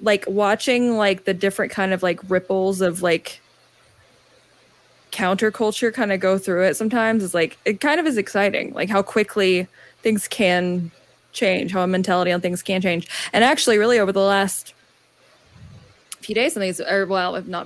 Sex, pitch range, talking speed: female, 185-215 Hz, 165 wpm